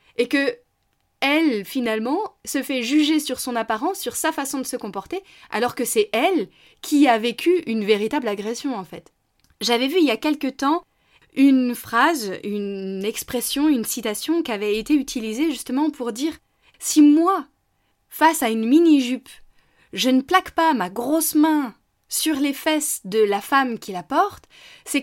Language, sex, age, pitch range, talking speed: French, female, 20-39, 225-315 Hz, 175 wpm